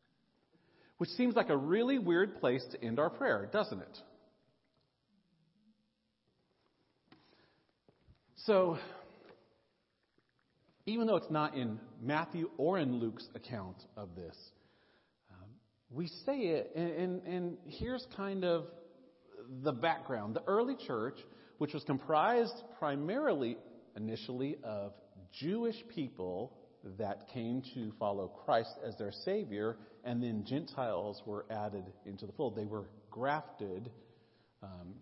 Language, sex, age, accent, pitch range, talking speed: English, male, 40-59, American, 120-170 Hz, 120 wpm